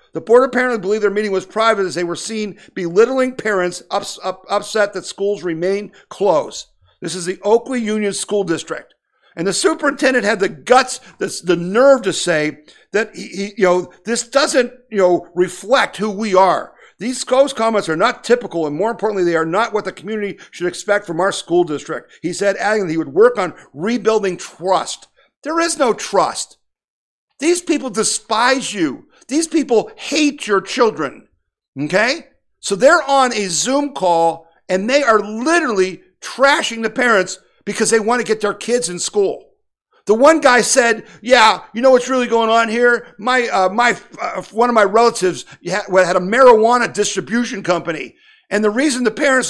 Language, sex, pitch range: English, male, 185-255 Hz